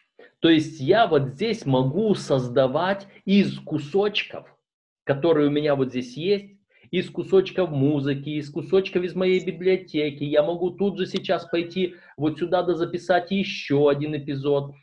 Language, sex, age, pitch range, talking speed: Russian, male, 30-49, 135-180 Hz, 140 wpm